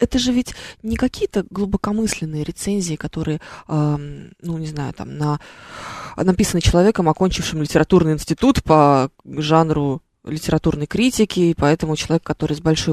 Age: 20-39